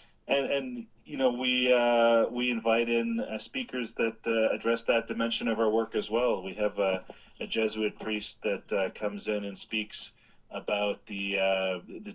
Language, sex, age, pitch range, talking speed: English, male, 40-59, 95-115 Hz, 185 wpm